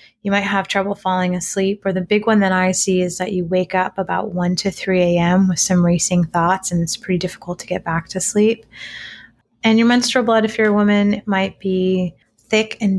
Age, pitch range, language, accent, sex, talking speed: 20-39, 175-200 Hz, English, American, female, 220 wpm